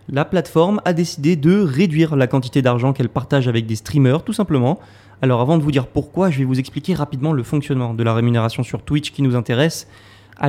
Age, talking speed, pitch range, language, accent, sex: 20-39, 215 wpm, 125-155 Hz, French, French, male